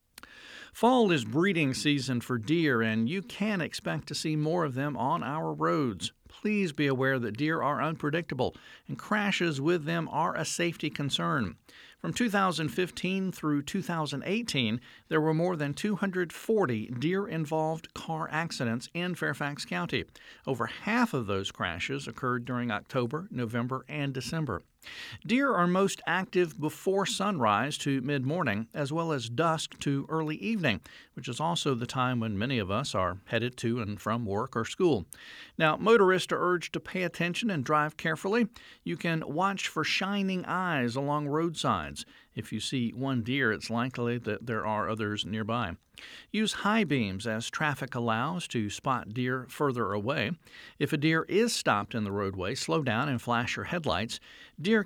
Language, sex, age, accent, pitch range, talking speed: English, male, 50-69, American, 120-175 Hz, 165 wpm